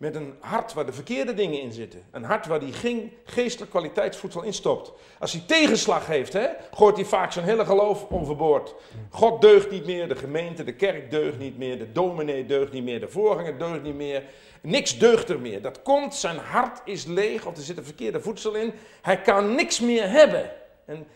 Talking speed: 205 wpm